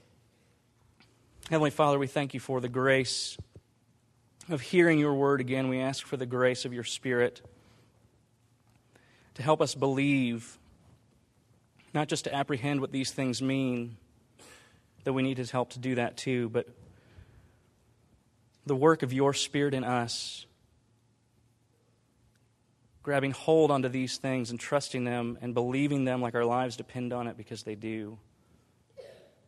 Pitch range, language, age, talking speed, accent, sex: 120-130 Hz, English, 30-49, 145 wpm, American, male